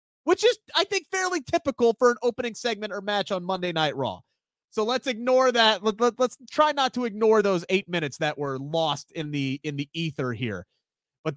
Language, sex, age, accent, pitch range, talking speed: English, male, 30-49, American, 160-230 Hz, 210 wpm